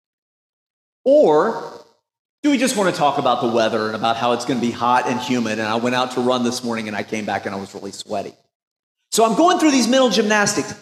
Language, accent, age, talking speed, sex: English, American, 40-59, 245 wpm, male